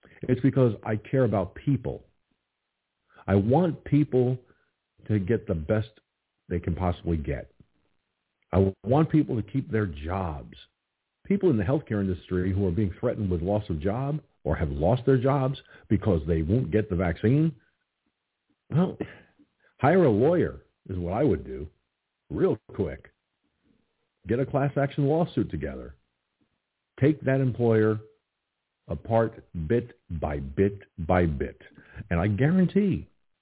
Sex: male